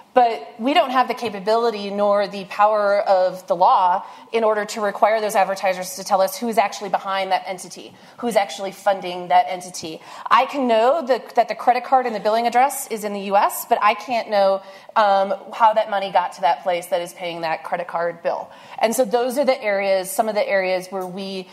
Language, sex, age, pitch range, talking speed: English, female, 30-49, 190-235 Hz, 220 wpm